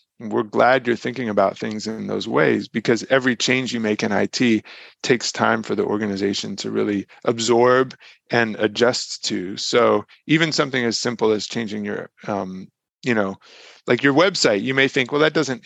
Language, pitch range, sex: English, 105-130 Hz, male